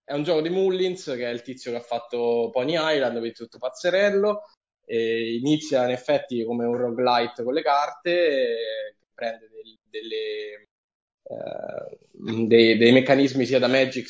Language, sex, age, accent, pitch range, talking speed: Italian, male, 10-29, native, 125-155 Hz, 165 wpm